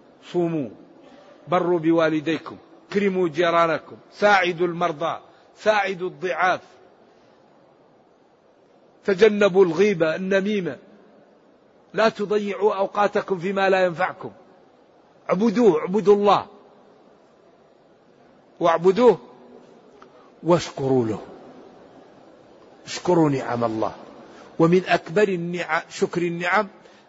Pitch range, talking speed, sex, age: 160-200 Hz, 70 wpm, male, 50-69